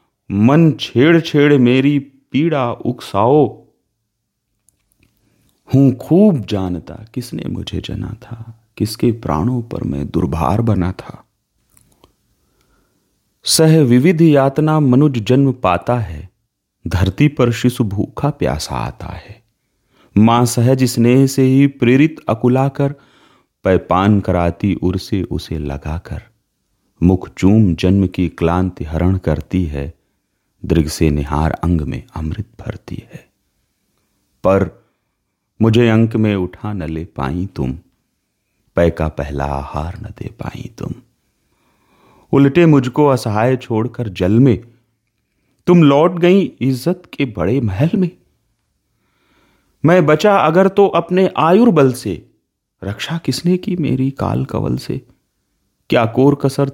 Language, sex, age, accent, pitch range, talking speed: Hindi, male, 40-59, native, 90-135 Hz, 115 wpm